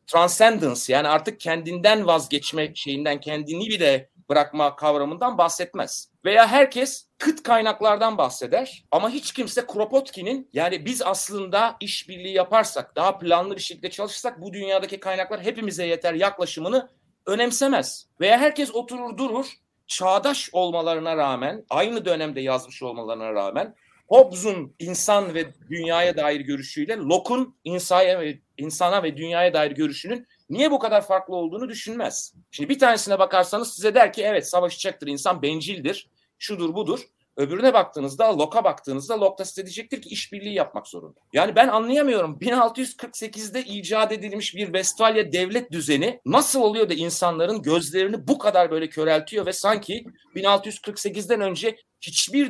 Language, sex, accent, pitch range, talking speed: Turkish, male, native, 165-225 Hz, 135 wpm